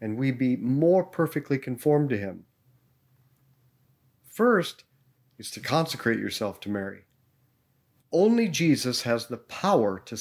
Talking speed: 125 wpm